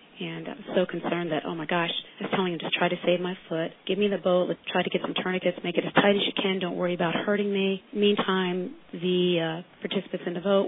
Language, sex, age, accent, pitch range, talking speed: English, female, 40-59, American, 175-195 Hz, 270 wpm